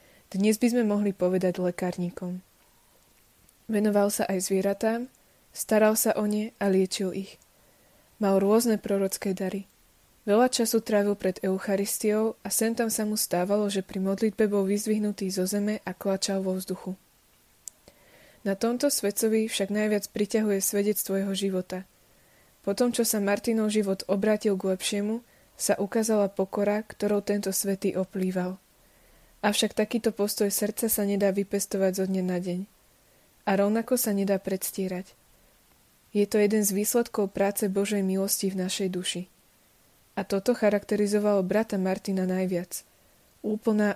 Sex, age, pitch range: female, 20-39, 190-215 Hz